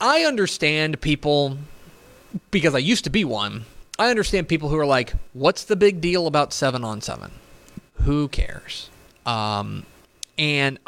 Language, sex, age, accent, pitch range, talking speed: English, male, 30-49, American, 115-175 Hz, 150 wpm